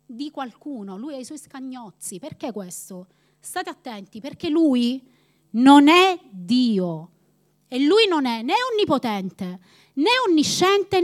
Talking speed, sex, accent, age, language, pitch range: 130 wpm, female, native, 30-49, Italian, 220-330 Hz